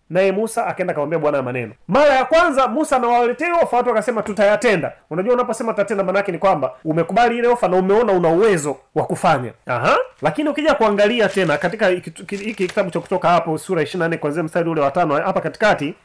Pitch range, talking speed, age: 175-245 Hz, 200 wpm, 30-49